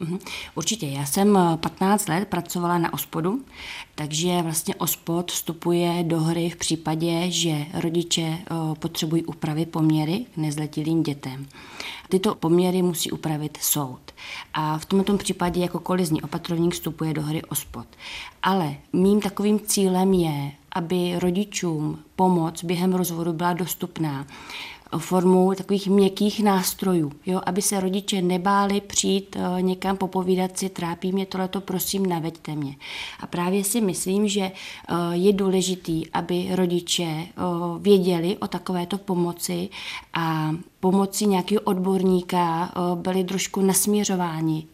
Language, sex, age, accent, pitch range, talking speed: Czech, female, 30-49, native, 165-190 Hz, 125 wpm